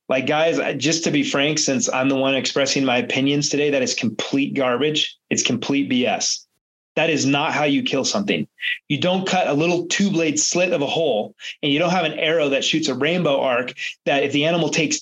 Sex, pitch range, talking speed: male, 140-175 Hz, 215 wpm